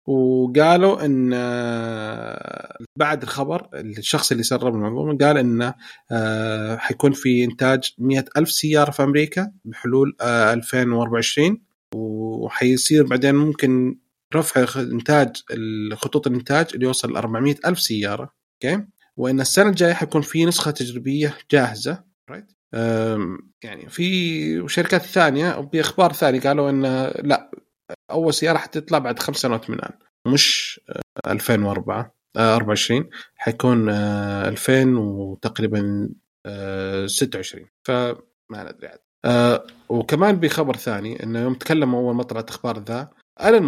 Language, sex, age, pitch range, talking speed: Arabic, male, 30-49, 115-150 Hz, 110 wpm